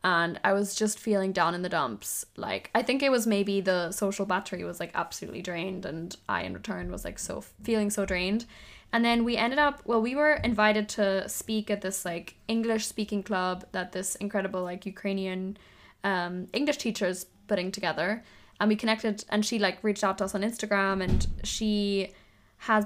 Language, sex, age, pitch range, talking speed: English, female, 10-29, 190-220 Hz, 195 wpm